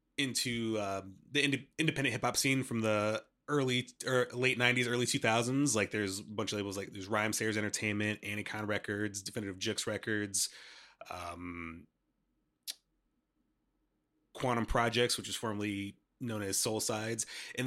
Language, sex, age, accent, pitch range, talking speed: English, male, 30-49, American, 105-140 Hz, 150 wpm